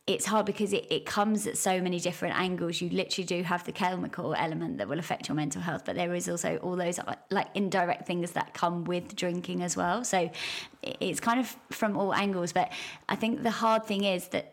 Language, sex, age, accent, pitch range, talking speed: English, female, 20-39, British, 180-205 Hz, 225 wpm